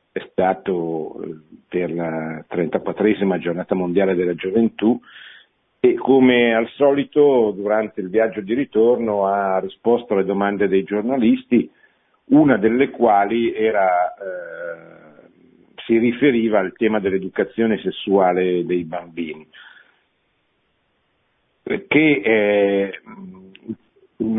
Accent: native